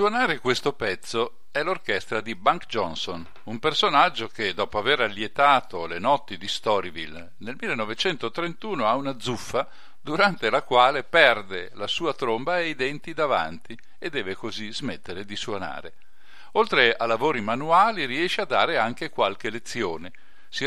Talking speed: 150 wpm